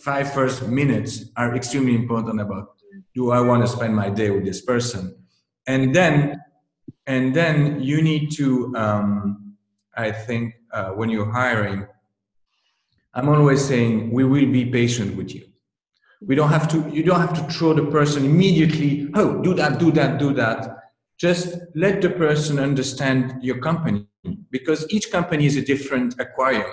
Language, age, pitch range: English, 40-59, 115-150 Hz